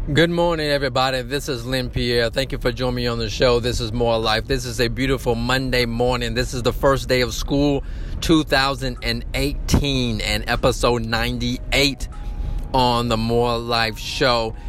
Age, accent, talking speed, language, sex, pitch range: 30-49, American, 170 wpm, English, male, 110-130 Hz